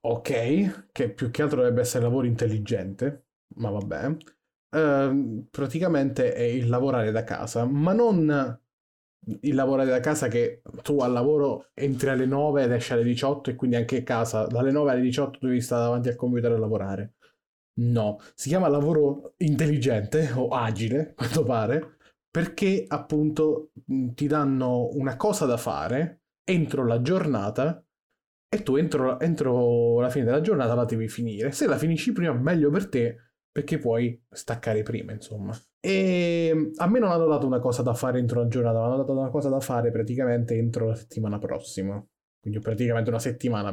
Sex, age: male, 20-39